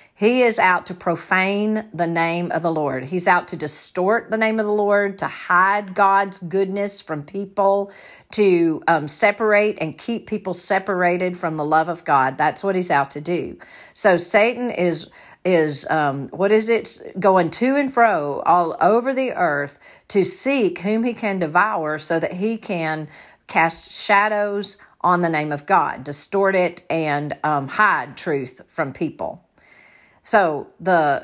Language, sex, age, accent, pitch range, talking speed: English, female, 50-69, American, 160-205 Hz, 165 wpm